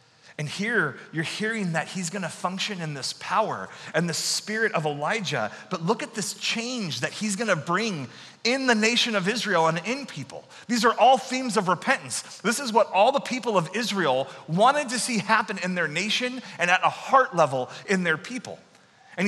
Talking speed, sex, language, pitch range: 195 wpm, male, English, 160-220 Hz